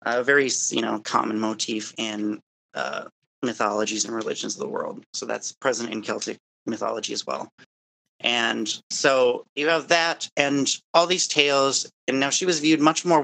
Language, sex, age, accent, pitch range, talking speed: English, male, 30-49, American, 115-145 Hz, 170 wpm